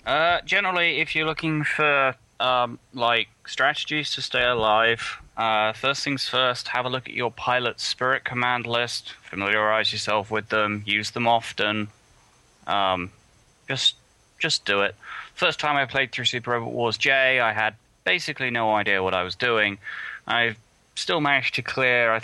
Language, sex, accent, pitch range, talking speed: English, male, British, 100-125 Hz, 165 wpm